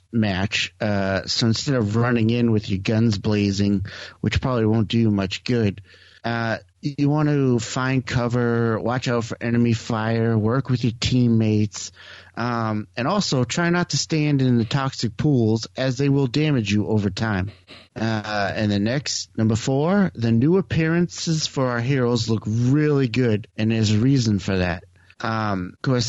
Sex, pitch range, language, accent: male, 105-125 Hz, English, American